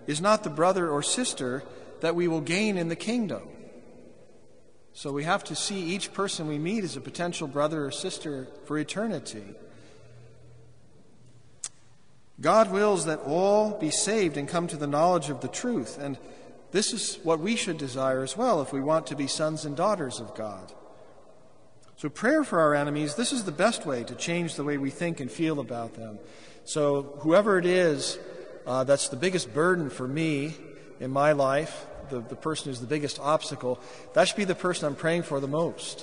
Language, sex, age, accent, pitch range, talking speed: English, male, 50-69, American, 130-175 Hz, 190 wpm